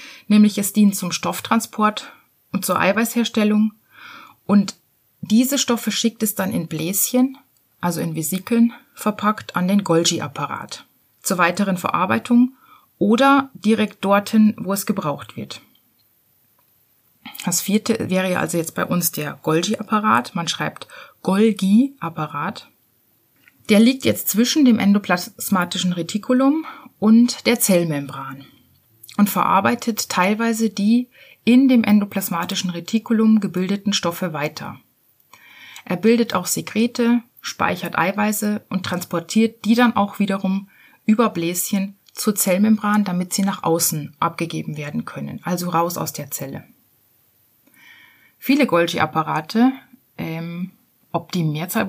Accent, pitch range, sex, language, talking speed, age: German, 175-225 Hz, female, German, 115 wpm, 30-49